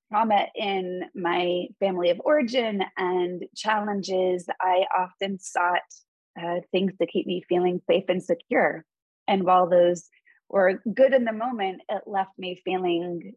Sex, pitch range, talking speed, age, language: female, 175-200 Hz, 145 wpm, 20-39, English